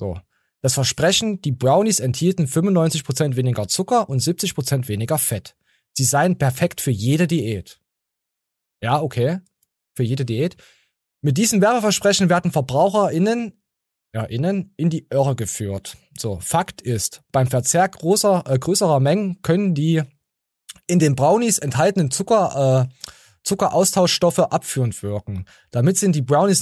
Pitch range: 130-180 Hz